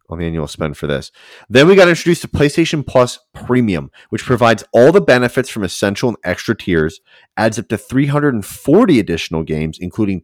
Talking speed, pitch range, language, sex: 180 wpm, 85-115 Hz, English, male